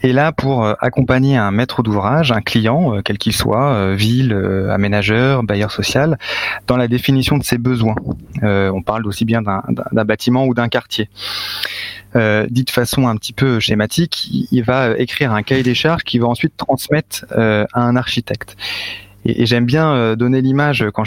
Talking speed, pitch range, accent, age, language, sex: 165 wpm, 110-140 Hz, French, 20-39, French, male